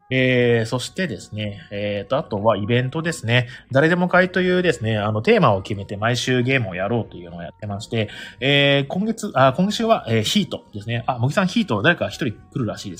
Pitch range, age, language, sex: 105-145 Hz, 20-39, Japanese, male